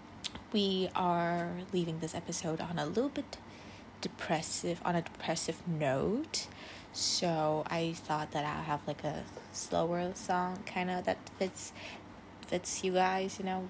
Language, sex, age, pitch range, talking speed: English, female, 20-39, 155-190 Hz, 140 wpm